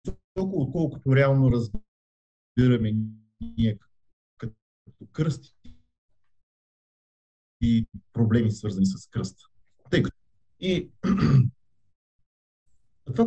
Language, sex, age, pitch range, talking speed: Bulgarian, male, 40-59, 110-155 Hz, 65 wpm